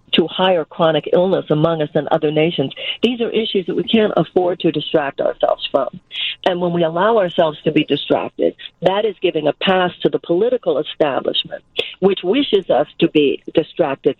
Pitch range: 155-190 Hz